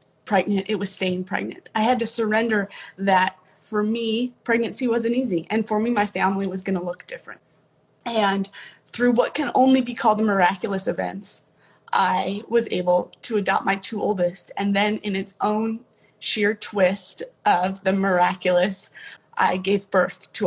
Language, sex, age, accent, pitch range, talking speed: English, female, 20-39, American, 180-215 Hz, 165 wpm